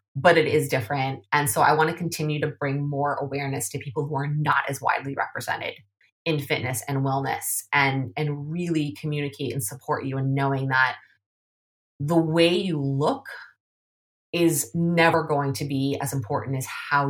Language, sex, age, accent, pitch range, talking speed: English, female, 20-39, American, 135-155 Hz, 170 wpm